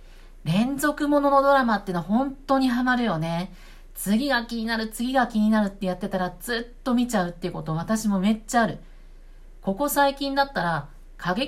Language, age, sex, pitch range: Japanese, 50-69, female, 165-235 Hz